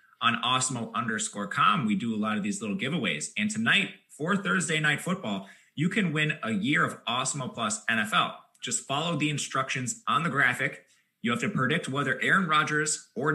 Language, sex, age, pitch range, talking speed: English, male, 20-39, 130-205 Hz, 190 wpm